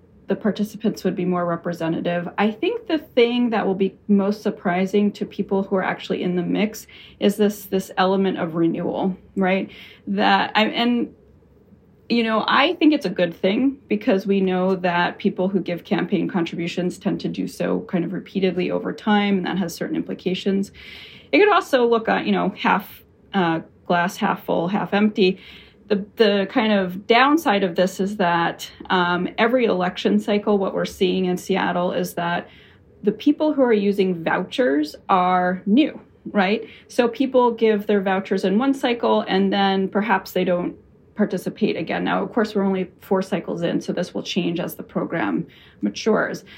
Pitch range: 180-215 Hz